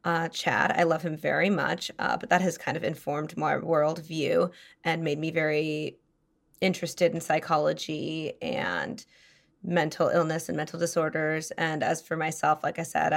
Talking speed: 165 wpm